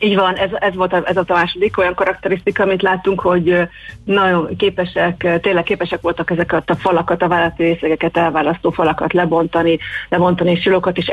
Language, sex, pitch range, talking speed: Hungarian, female, 165-180 Hz, 165 wpm